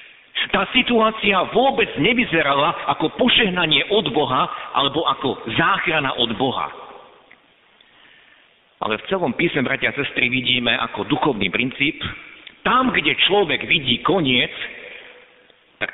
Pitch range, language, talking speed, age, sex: 140-205 Hz, Slovak, 115 wpm, 50-69, male